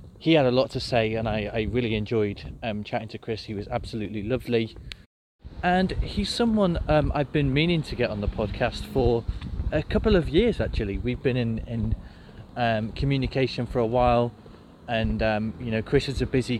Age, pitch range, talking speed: 30-49, 110-130 Hz, 195 wpm